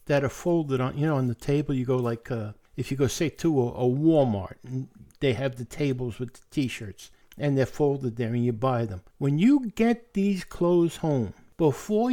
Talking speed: 215 wpm